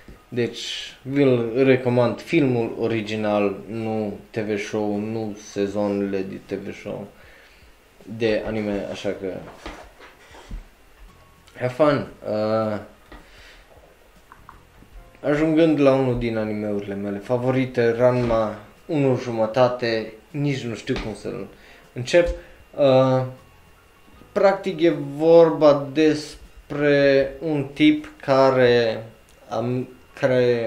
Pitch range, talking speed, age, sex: 110-140 Hz, 90 wpm, 20-39, male